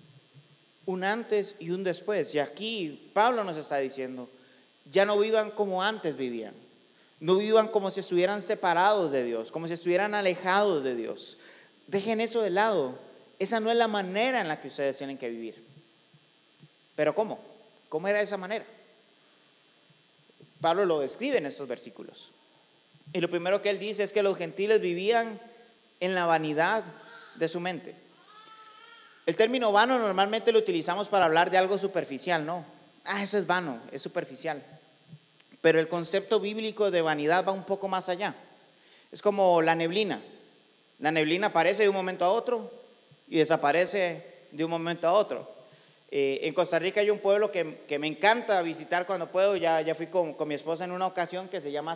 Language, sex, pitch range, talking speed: Spanish, male, 160-210 Hz, 175 wpm